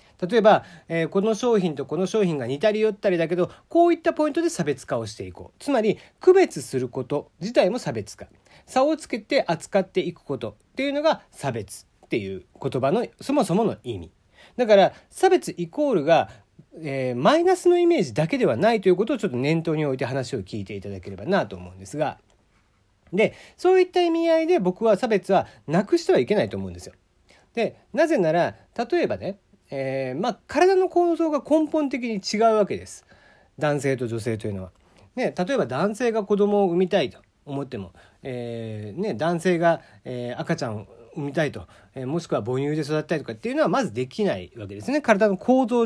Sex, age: male, 40-59